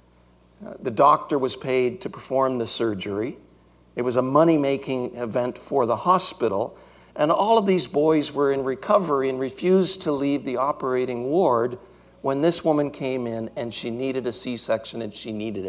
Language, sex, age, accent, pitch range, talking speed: English, male, 60-79, American, 105-135 Hz, 170 wpm